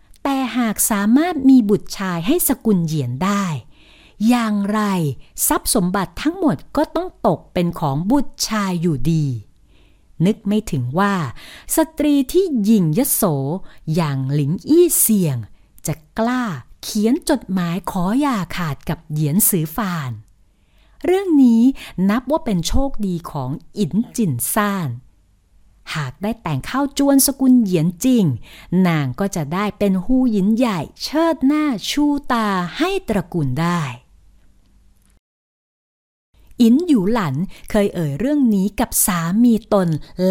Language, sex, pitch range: Thai, female, 155-240 Hz